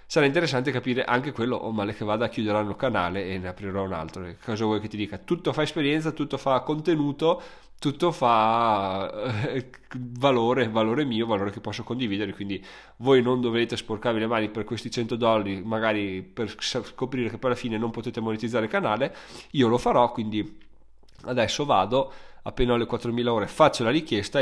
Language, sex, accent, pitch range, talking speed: Italian, male, native, 105-125 Hz, 180 wpm